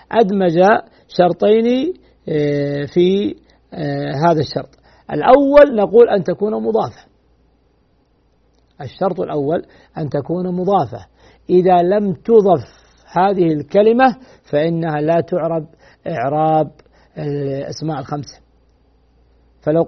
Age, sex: 50-69, male